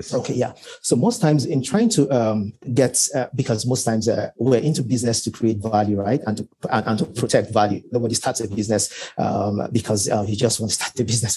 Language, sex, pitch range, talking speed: English, male, 110-135 Hz, 225 wpm